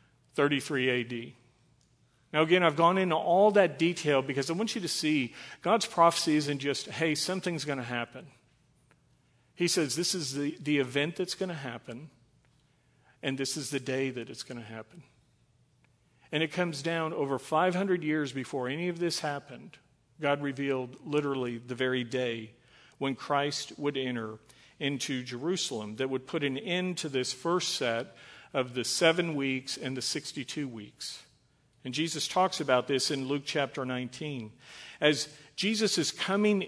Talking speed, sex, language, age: 165 wpm, male, English, 50-69